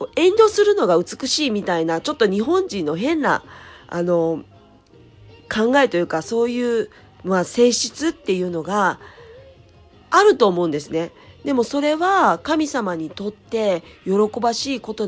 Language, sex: Japanese, female